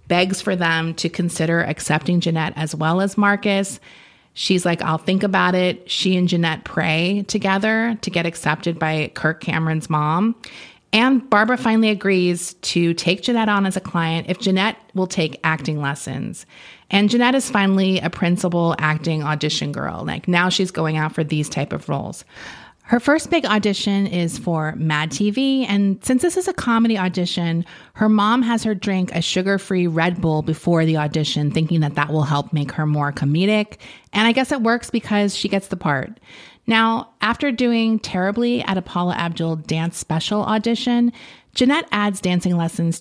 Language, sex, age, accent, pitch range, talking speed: English, female, 30-49, American, 165-215 Hz, 175 wpm